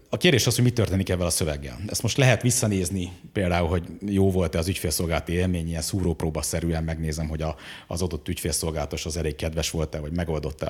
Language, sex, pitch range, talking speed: Hungarian, male, 90-110 Hz, 185 wpm